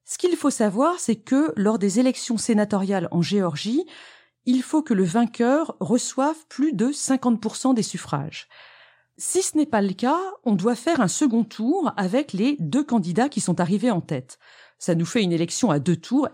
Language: French